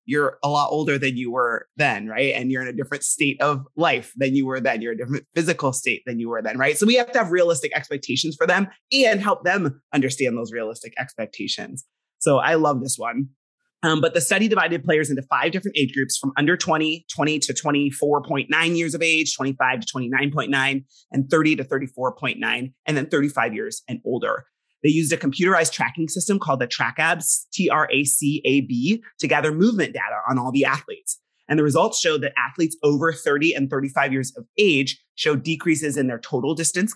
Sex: male